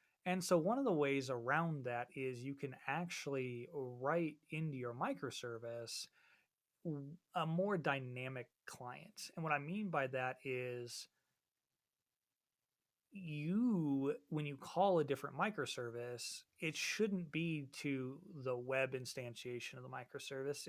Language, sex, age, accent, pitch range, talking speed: English, male, 30-49, American, 125-165 Hz, 130 wpm